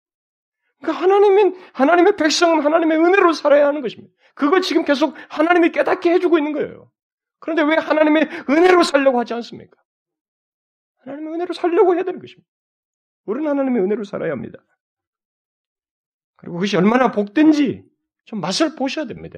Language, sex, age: Korean, male, 40-59